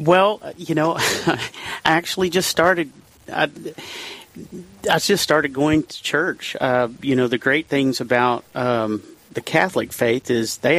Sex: male